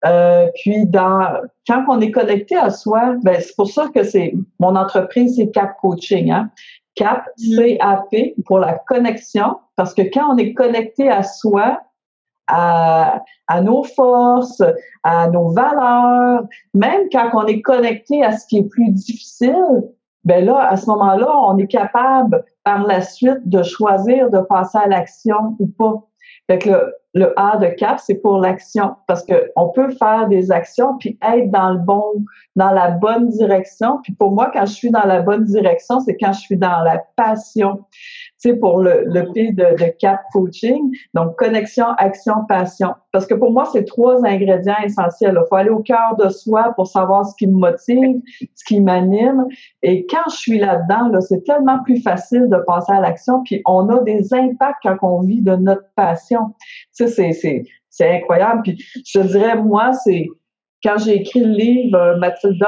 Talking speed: 185 wpm